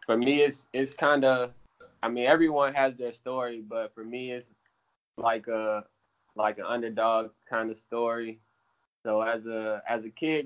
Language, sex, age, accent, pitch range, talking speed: English, male, 20-39, American, 110-125 Hz, 170 wpm